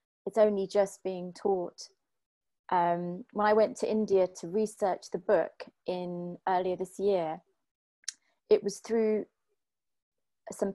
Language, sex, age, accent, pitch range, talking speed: English, female, 20-39, British, 185-220 Hz, 130 wpm